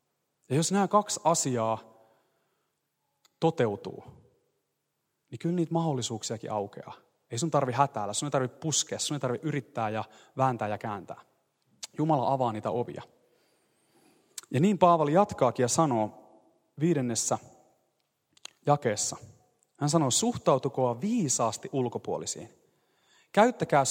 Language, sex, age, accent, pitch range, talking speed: Finnish, male, 30-49, native, 135-170 Hz, 115 wpm